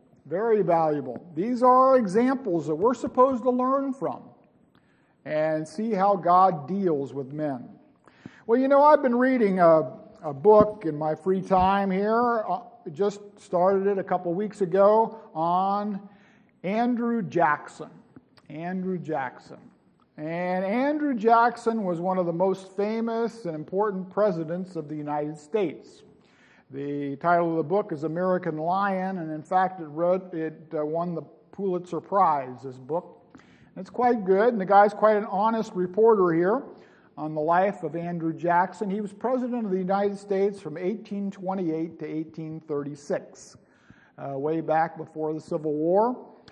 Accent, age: American, 50-69